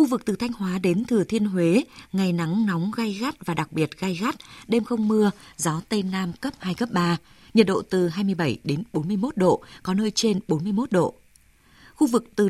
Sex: female